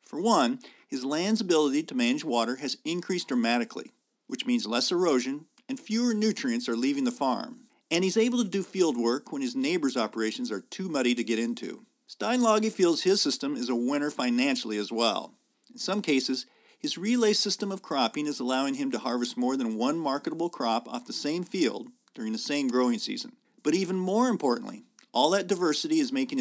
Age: 50-69